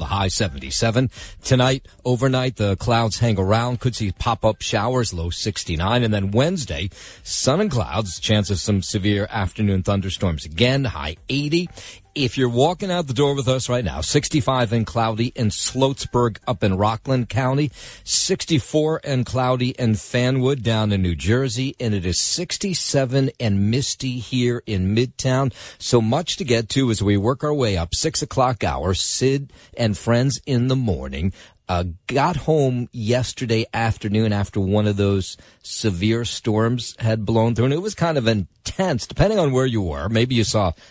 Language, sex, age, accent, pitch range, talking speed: English, male, 50-69, American, 95-130 Hz, 170 wpm